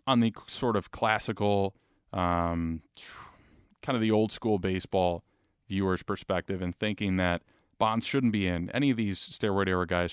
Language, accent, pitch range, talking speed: English, American, 95-120 Hz, 150 wpm